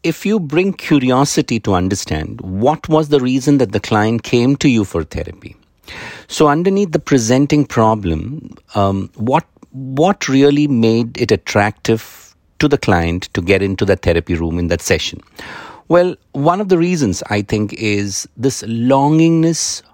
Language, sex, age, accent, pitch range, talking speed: English, male, 50-69, Indian, 95-135 Hz, 155 wpm